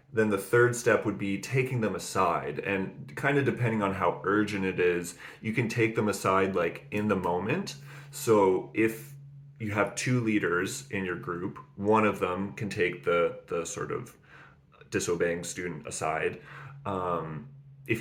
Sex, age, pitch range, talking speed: male, 30-49, 95-135 Hz, 165 wpm